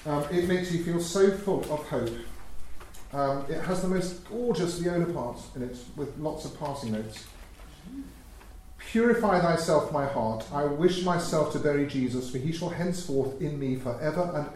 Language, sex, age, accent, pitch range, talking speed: English, male, 40-59, British, 125-180 Hz, 175 wpm